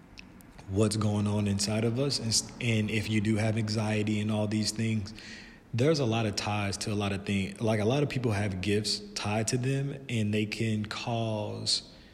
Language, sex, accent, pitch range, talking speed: English, male, American, 105-115 Hz, 205 wpm